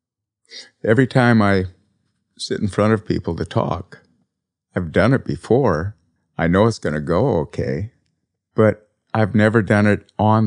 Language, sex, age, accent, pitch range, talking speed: English, male, 50-69, American, 90-110 Hz, 155 wpm